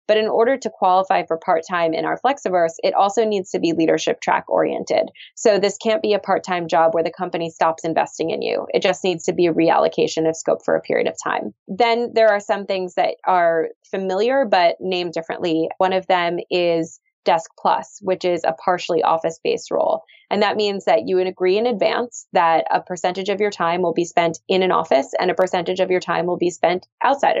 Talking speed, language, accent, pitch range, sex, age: 220 wpm, English, American, 170-200 Hz, female, 20-39